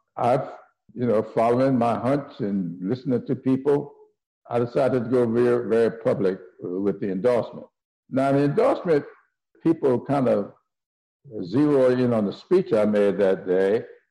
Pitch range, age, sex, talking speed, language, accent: 110-155 Hz, 60-79, male, 155 wpm, English, American